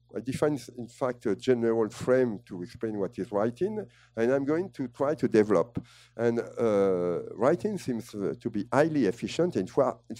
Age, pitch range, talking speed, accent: 50-69, 100-135 Hz, 175 wpm, French